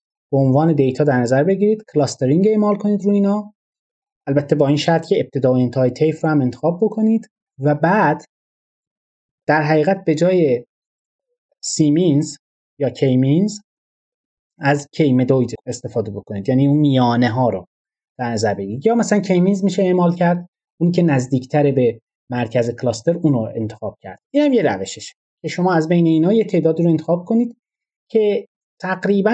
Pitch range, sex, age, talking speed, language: 130-195 Hz, male, 30-49, 160 wpm, Persian